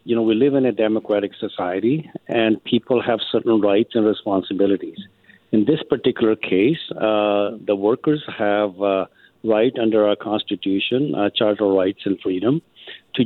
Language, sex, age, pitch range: English, male, 50-69, 105-125 Hz